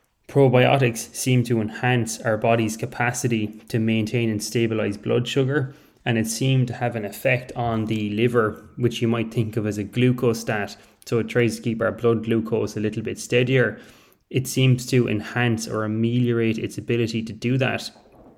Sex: male